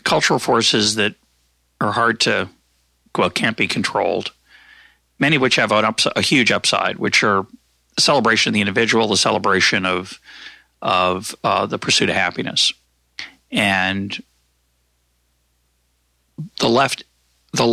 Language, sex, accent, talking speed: English, male, American, 130 wpm